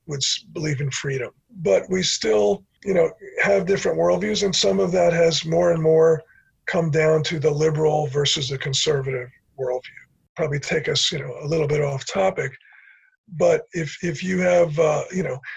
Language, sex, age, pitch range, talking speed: English, male, 50-69, 145-180 Hz, 180 wpm